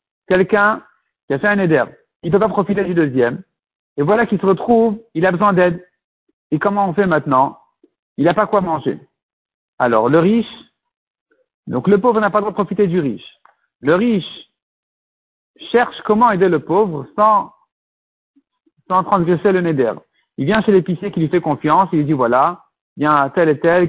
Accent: French